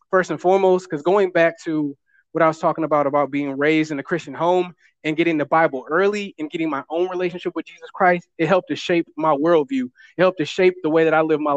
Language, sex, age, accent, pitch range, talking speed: English, male, 20-39, American, 155-180 Hz, 250 wpm